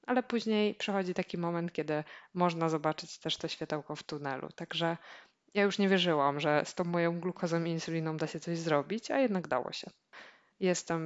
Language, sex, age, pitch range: Polish, female, 20-39, 155-185 Hz